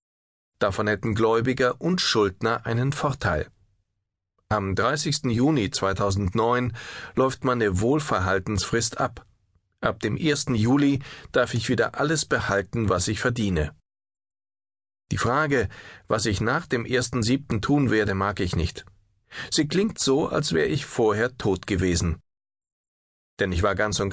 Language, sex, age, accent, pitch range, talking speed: German, male, 40-59, German, 95-125 Hz, 130 wpm